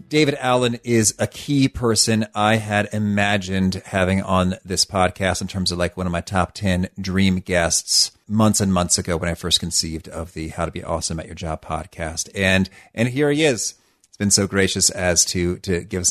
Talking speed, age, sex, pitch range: 210 wpm, 40-59, male, 95-120 Hz